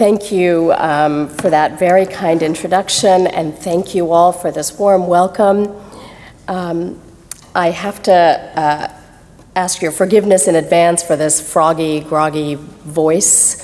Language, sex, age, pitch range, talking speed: English, female, 40-59, 170-240 Hz, 135 wpm